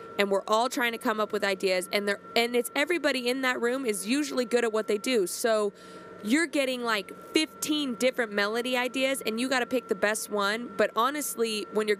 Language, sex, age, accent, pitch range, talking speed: English, female, 20-39, American, 195-235 Hz, 220 wpm